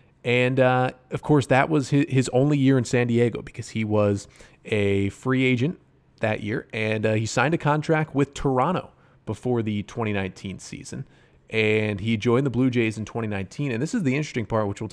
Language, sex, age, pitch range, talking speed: English, male, 30-49, 105-140 Hz, 195 wpm